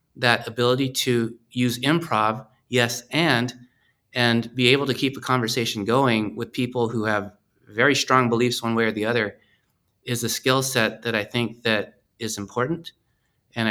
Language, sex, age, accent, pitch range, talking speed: English, male, 30-49, American, 115-130 Hz, 165 wpm